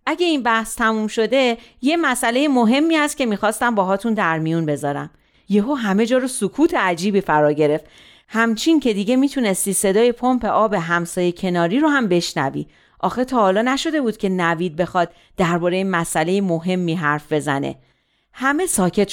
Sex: female